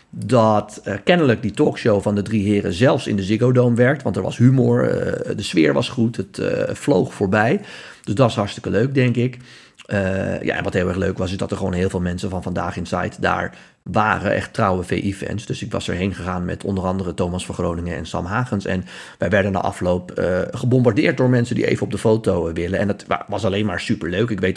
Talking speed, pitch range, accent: 230 wpm, 95-125 Hz, Dutch